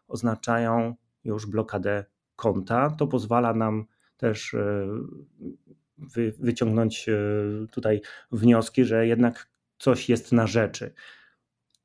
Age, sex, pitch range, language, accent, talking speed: 30-49, male, 105-125 Hz, Polish, native, 85 wpm